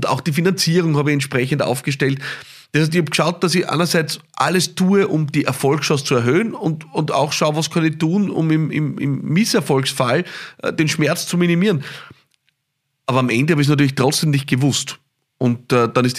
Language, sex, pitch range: German, male, 130-160 Hz